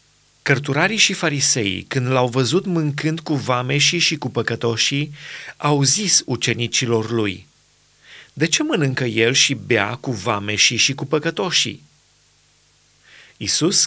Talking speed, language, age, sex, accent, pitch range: 120 wpm, Romanian, 30-49, male, native, 120-150 Hz